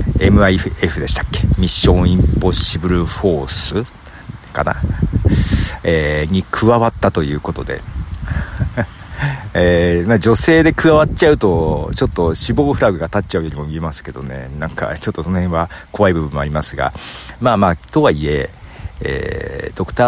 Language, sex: Japanese, male